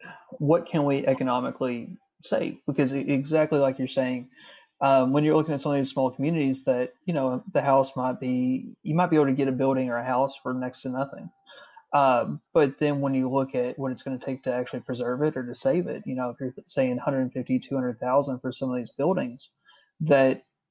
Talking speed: 215 wpm